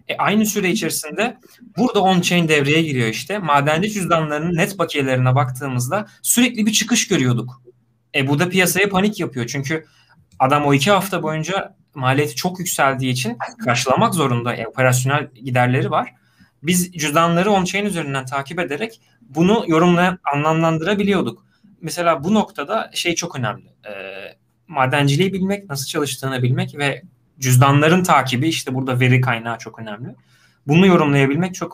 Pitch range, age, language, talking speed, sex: 130-180 Hz, 30-49, Turkish, 140 wpm, male